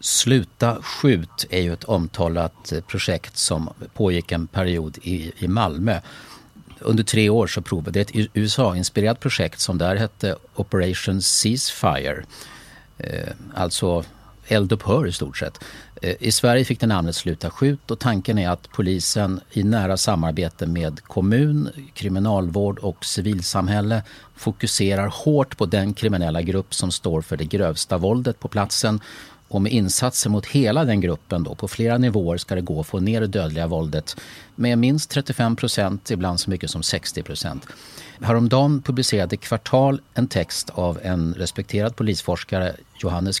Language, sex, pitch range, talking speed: Swedish, male, 90-115 Hz, 150 wpm